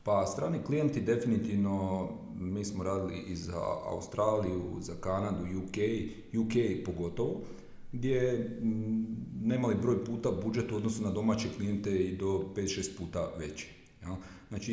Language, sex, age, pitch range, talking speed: Croatian, male, 40-59, 95-120 Hz, 125 wpm